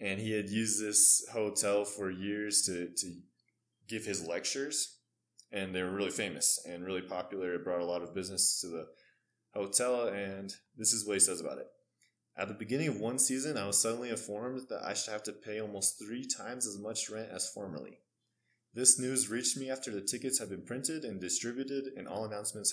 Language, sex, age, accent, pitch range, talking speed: English, male, 20-39, American, 100-120 Hz, 205 wpm